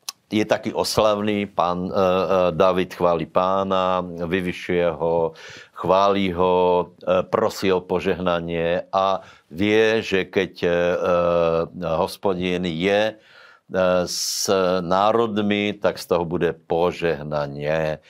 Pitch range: 85-100 Hz